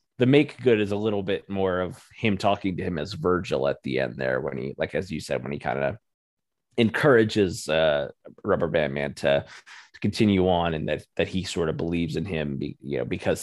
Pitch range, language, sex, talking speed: 85-105 Hz, English, male, 230 wpm